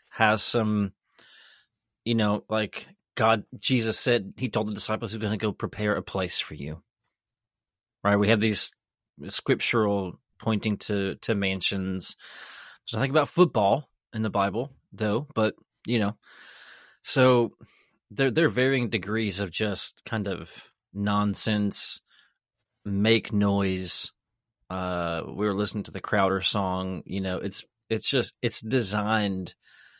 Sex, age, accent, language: male, 30-49, American, English